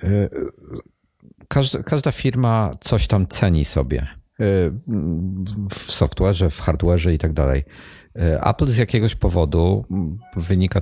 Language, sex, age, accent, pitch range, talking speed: Polish, male, 50-69, native, 85-105 Hz, 105 wpm